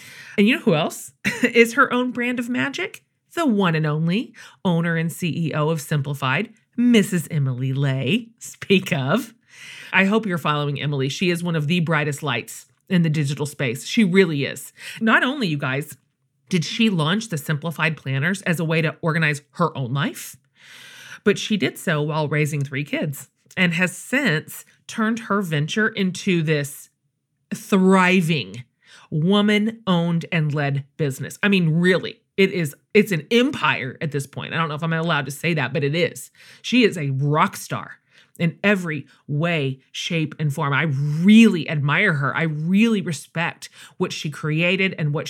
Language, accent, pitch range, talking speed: English, American, 150-205 Hz, 170 wpm